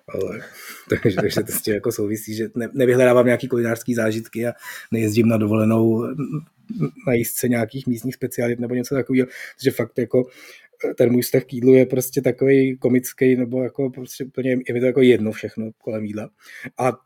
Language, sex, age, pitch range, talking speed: Czech, male, 20-39, 120-140 Hz, 180 wpm